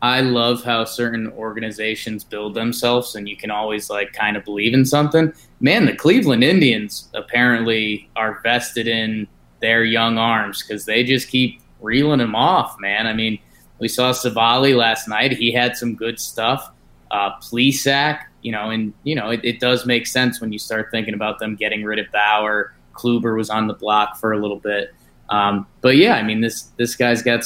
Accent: American